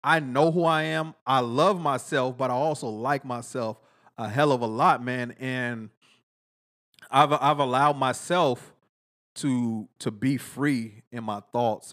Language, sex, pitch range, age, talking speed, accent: English, male, 110-130 Hz, 30-49, 155 wpm, American